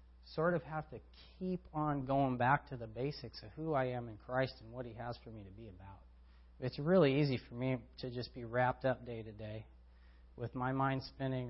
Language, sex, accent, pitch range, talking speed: English, male, American, 100-130 Hz, 225 wpm